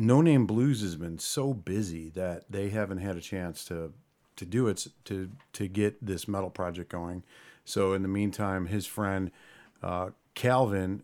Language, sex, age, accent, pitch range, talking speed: English, male, 40-59, American, 90-105 Hz, 175 wpm